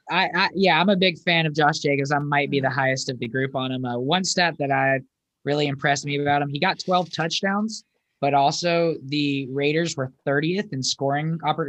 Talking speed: 220 wpm